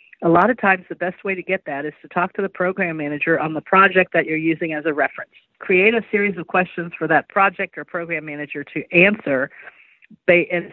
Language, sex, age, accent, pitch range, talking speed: English, female, 50-69, American, 160-190 Hz, 225 wpm